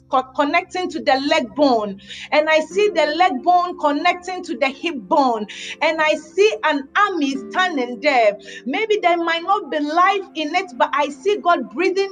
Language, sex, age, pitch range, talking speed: English, female, 40-59, 280-350 Hz, 180 wpm